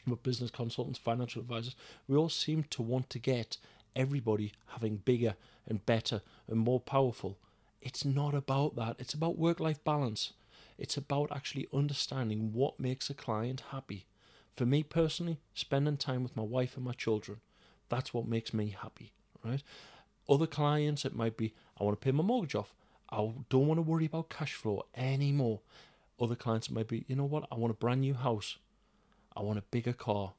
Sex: male